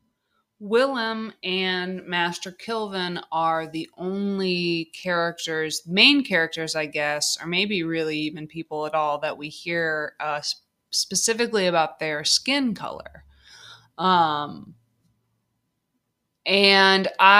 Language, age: English, 20-39